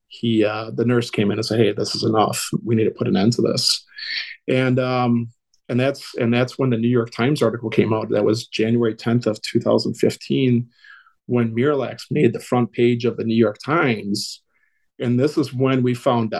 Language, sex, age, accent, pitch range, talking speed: English, male, 40-59, American, 115-135 Hz, 210 wpm